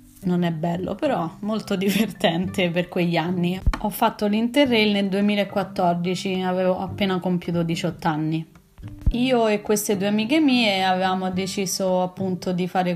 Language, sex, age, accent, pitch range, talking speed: Italian, female, 20-39, native, 180-210 Hz, 140 wpm